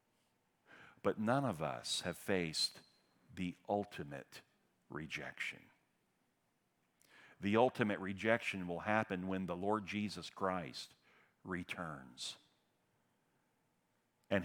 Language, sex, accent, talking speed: English, male, American, 85 wpm